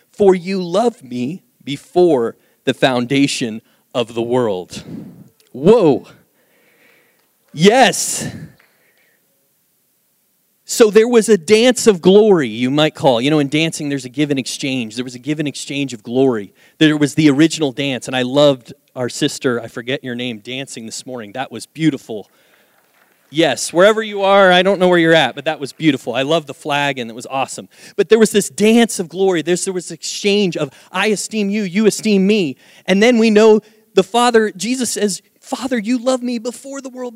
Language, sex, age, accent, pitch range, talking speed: English, male, 30-49, American, 140-210 Hz, 180 wpm